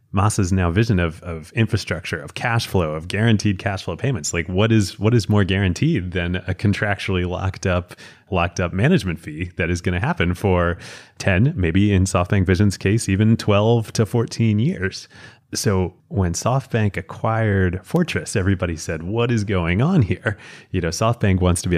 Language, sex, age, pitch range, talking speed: English, male, 30-49, 90-110 Hz, 180 wpm